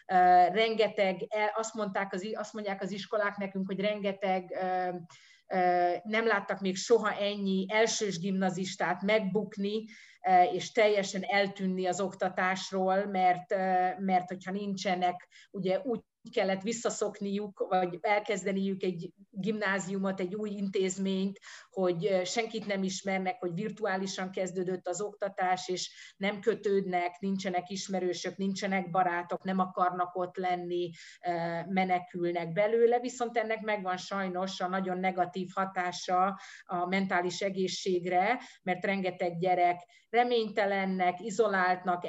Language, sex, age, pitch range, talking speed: Hungarian, female, 30-49, 185-205 Hz, 110 wpm